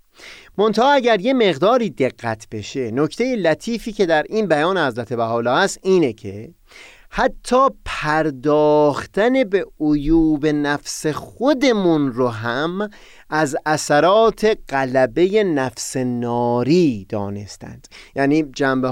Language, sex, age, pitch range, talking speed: Persian, male, 30-49, 130-210 Hz, 110 wpm